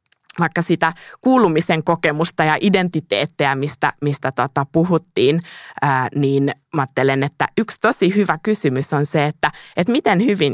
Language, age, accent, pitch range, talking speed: Finnish, 20-39, native, 150-180 Hz, 140 wpm